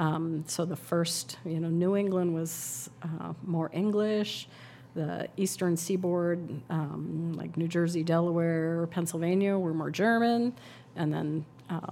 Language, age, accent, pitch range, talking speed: English, 40-59, American, 155-175 Hz, 135 wpm